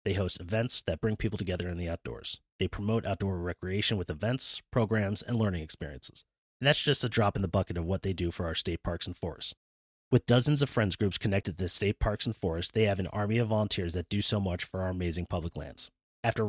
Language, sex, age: English, male, 30-49